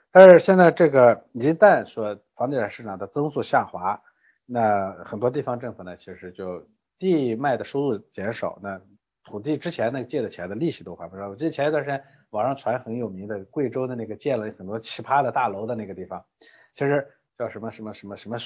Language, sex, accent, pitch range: Chinese, male, native, 105-150 Hz